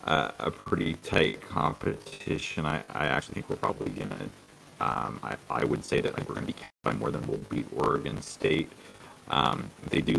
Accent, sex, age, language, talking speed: American, male, 30-49, English, 190 wpm